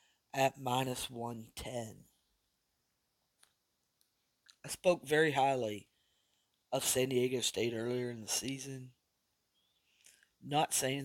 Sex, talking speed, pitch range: male, 100 wpm, 115-140 Hz